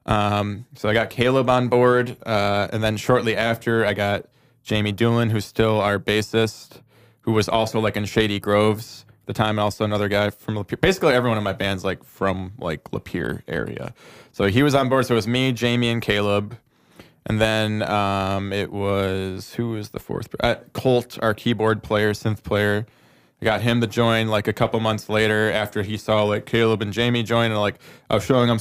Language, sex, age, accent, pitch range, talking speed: English, male, 20-39, American, 105-120 Hz, 205 wpm